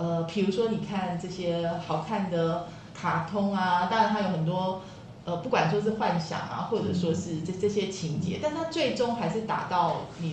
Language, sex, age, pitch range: Chinese, female, 30-49, 175-220 Hz